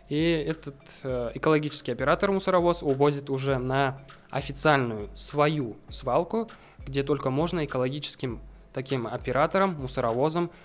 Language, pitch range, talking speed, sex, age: Russian, 130-155 Hz, 105 wpm, male, 20-39